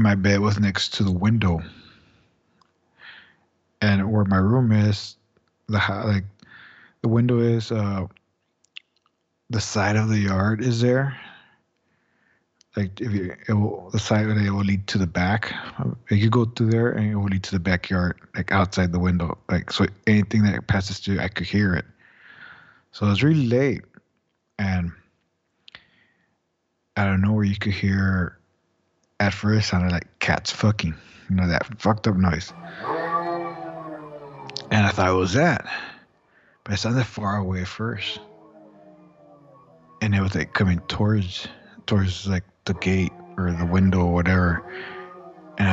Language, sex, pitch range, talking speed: English, male, 95-110 Hz, 155 wpm